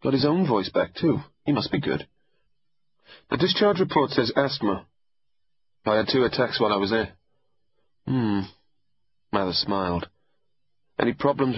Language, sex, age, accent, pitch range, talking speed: English, male, 30-49, British, 100-135 Hz, 145 wpm